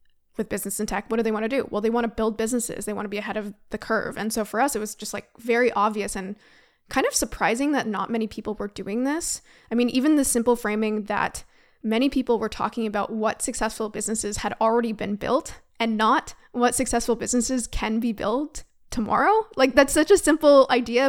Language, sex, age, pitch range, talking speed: English, female, 20-39, 215-250 Hz, 225 wpm